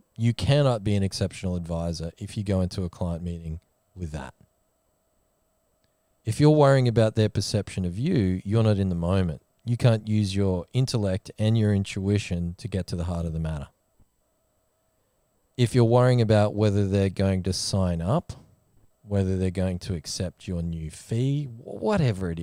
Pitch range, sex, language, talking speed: 90-110 Hz, male, English, 170 wpm